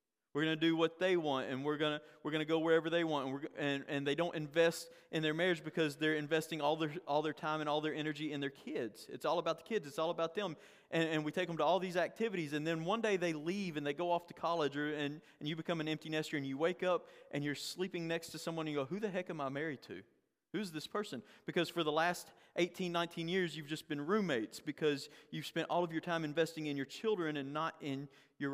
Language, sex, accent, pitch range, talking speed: English, male, American, 140-165 Hz, 270 wpm